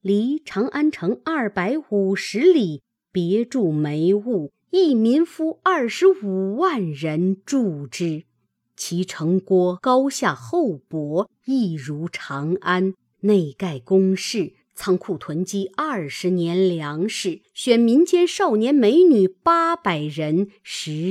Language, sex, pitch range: Chinese, female, 170-225 Hz